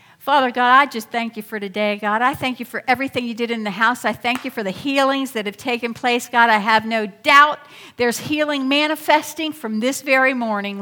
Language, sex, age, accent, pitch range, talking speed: English, female, 50-69, American, 240-325 Hz, 225 wpm